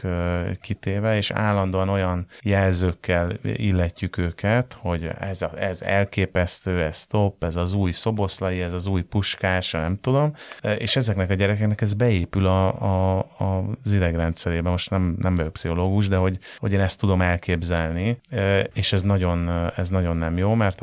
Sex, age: male, 30-49